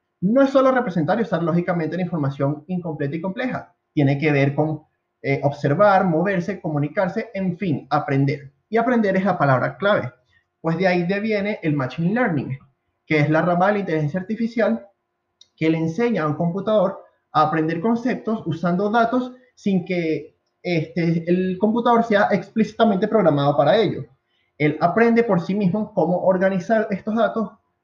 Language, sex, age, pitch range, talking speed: Spanish, male, 20-39, 150-205 Hz, 160 wpm